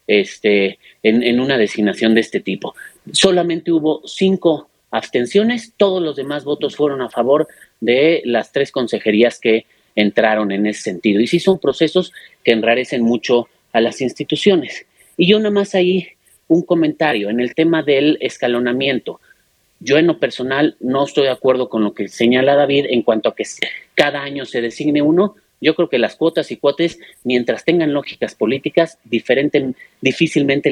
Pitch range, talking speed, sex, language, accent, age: 120-165 Hz, 165 wpm, male, Spanish, Mexican, 40-59